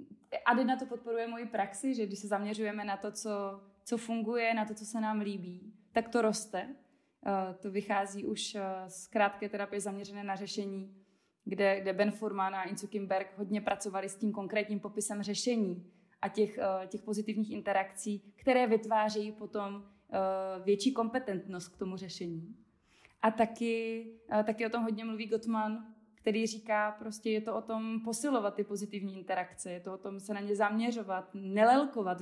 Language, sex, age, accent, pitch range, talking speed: Czech, female, 20-39, native, 195-225 Hz, 165 wpm